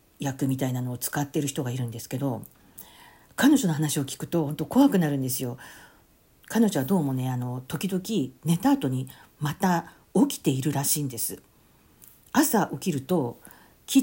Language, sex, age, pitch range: Japanese, female, 50-69, 135-195 Hz